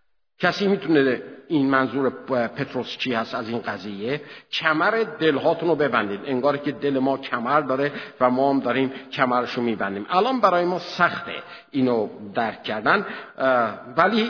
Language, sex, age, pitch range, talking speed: Persian, male, 50-69, 135-210 Hz, 145 wpm